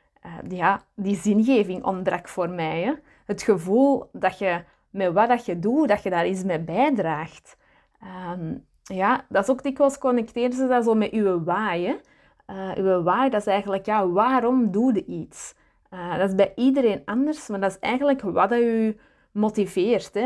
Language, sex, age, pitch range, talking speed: Dutch, female, 30-49, 185-225 Hz, 160 wpm